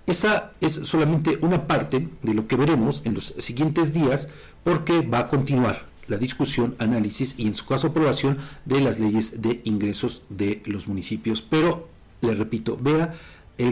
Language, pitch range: Spanish, 115-160 Hz